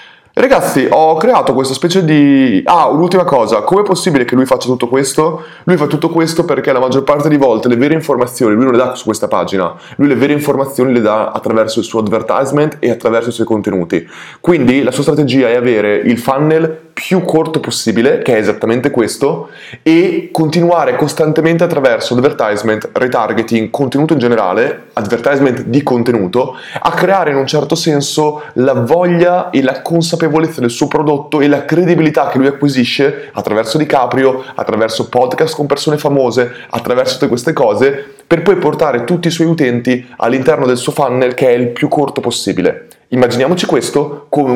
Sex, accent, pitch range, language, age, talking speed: male, native, 125-160 Hz, Italian, 20-39, 175 wpm